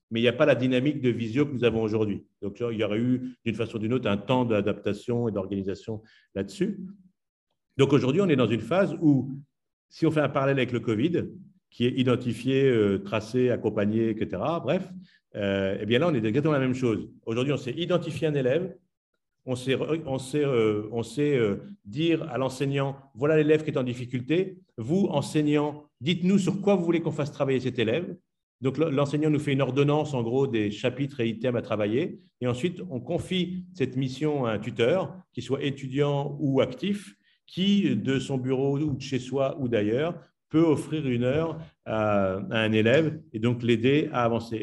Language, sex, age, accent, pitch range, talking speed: French, male, 50-69, French, 120-155 Hz, 200 wpm